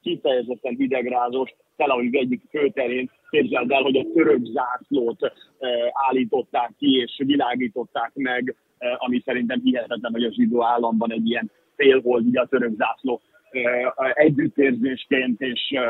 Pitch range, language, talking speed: 120-145 Hz, Hungarian, 115 wpm